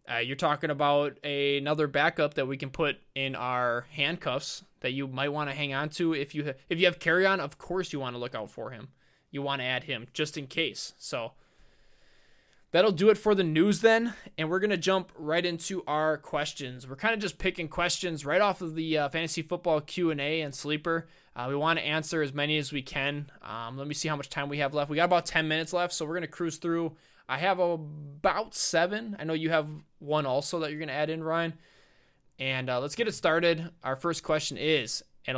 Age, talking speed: 20-39, 230 wpm